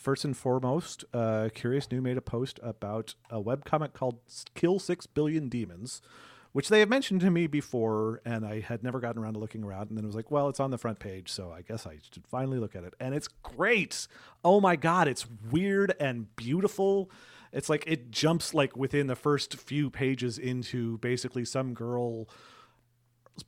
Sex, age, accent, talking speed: male, 40-59, American, 195 wpm